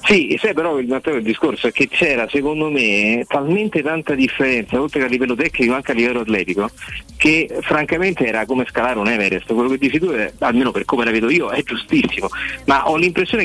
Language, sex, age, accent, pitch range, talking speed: Italian, male, 40-59, native, 110-145 Hz, 205 wpm